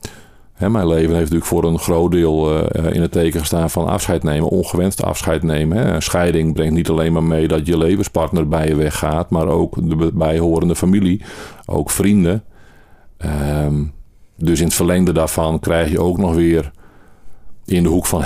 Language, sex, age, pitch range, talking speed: Dutch, male, 50-69, 80-95 Hz, 170 wpm